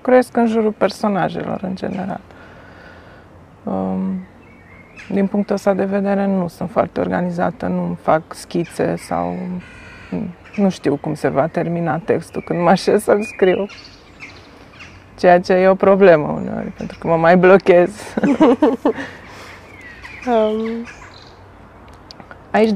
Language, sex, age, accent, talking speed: Romanian, female, 30-49, native, 115 wpm